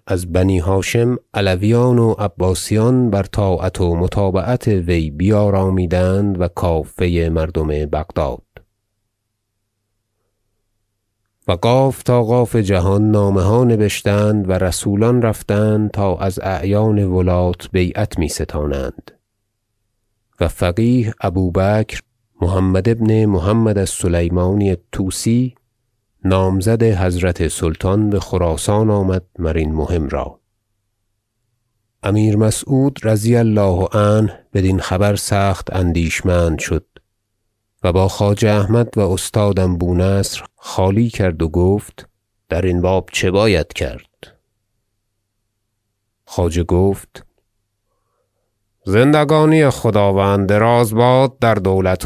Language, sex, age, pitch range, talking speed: Persian, male, 30-49, 95-110 Hz, 100 wpm